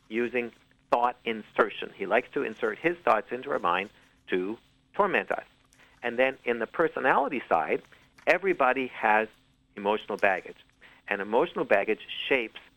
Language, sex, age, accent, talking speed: English, male, 50-69, American, 135 wpm